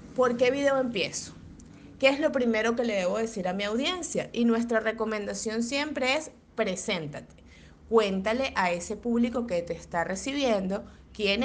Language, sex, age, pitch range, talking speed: Spanish, female, 30-49, 195-240 Hz, 155 wpm